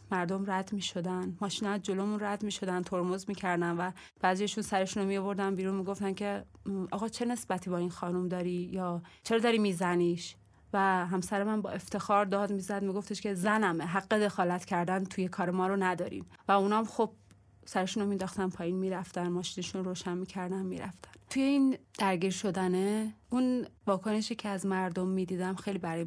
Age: 30-49